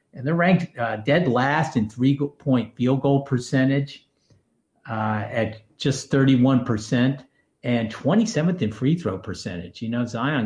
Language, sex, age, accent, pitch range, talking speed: English, male, 50-69, American, 110-140 Hz, 140 wpm